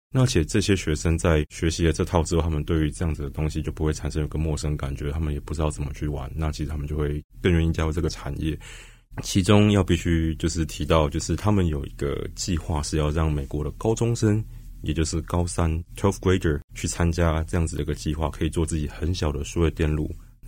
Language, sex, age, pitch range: Chinese, male, 20-39, 75-85 Hz